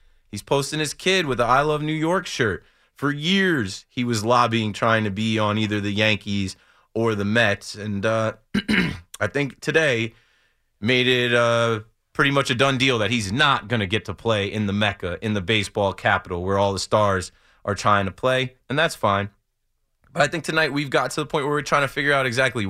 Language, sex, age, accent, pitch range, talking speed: English, male, 30-49, American, 105-140 Hz, 215 wpm